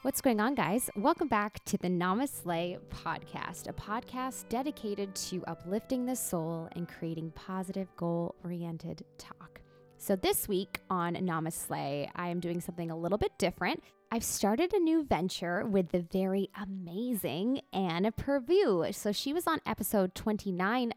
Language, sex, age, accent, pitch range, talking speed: English, female, 20-39, American, 170-235 Hz, 150 wpm